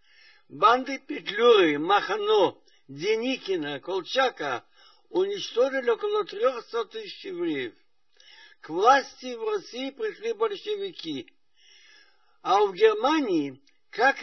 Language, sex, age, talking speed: Russian, male, 60-79, 85 wpm